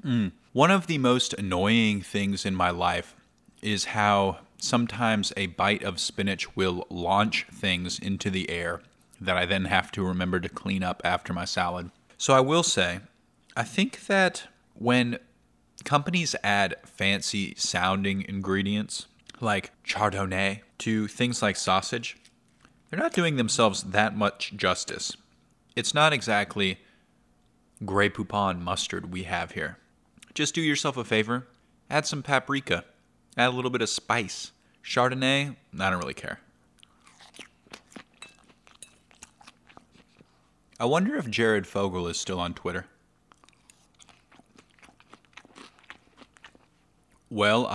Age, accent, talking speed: 30-49, American, 125 wpm